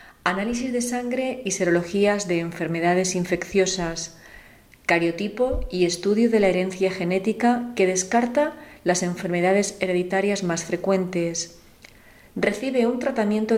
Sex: female